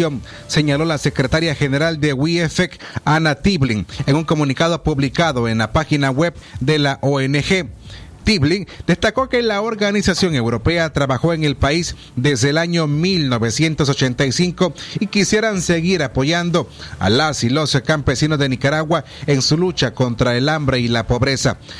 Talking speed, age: 145 wpm, 30-49